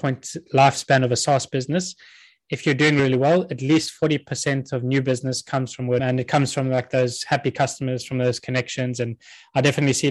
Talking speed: 200 wpm